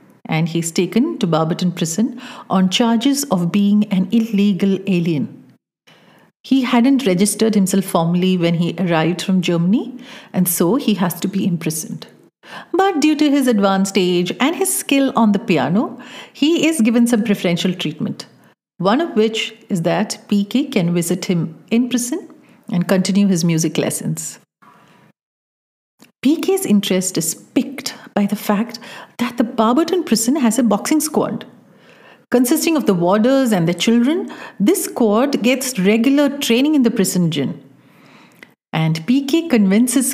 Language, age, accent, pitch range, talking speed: English, 50-69, Indian, 180-255 Hz, 150 wpm